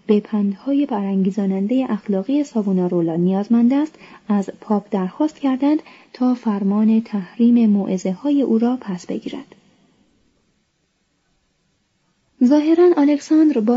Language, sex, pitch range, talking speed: Persian, female, 200-255 Hz, 105 wpm